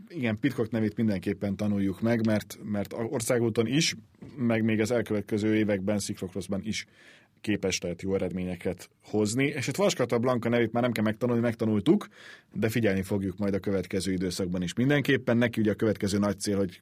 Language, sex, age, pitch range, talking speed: Hungarian, male, 30-49, 100-120 Hz, 170 wpm